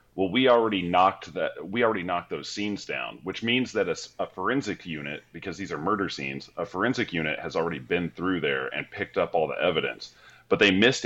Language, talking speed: English, 215 wpm